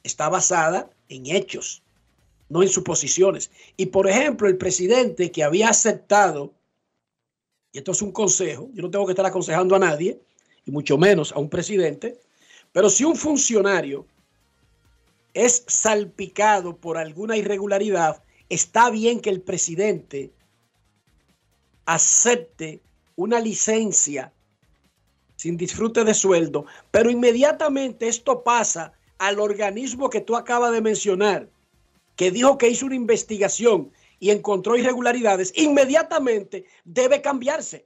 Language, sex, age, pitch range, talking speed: Spanish, male, 50-69, 185-240 Hz, 125 wpm